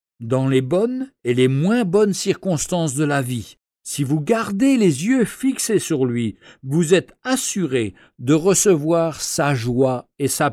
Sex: male